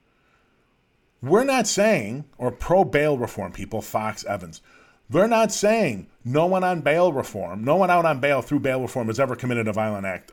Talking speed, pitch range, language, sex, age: 180 wpm, 110-160 Hz, English, male, 40-59